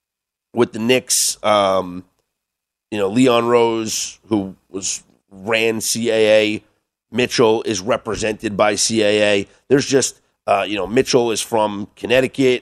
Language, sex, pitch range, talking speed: English, male, 110-160 Hz, 125 wpm